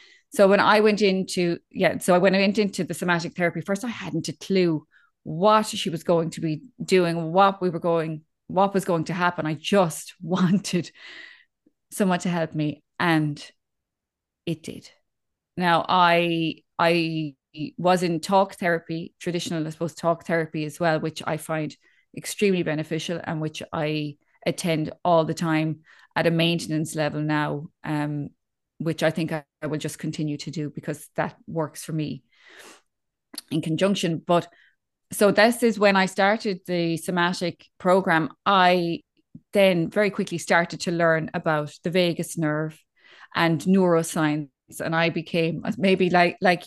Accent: Irish